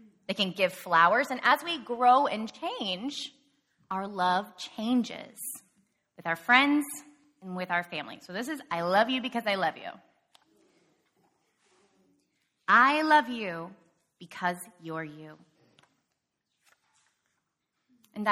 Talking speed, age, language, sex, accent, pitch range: 120 wpm, 20-39, English, female, American, 180-260 Hz